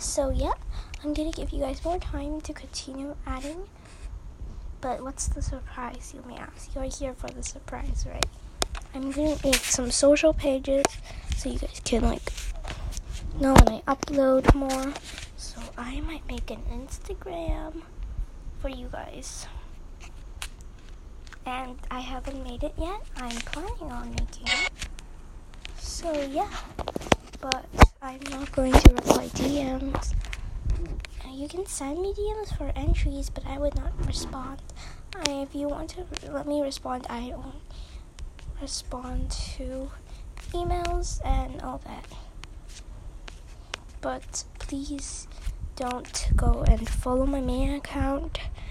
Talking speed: 130 wpm